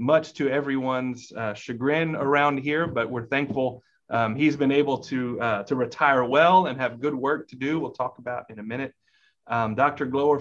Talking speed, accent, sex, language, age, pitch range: 200 wpm, American, male, English, 30-49, 125-160 Hz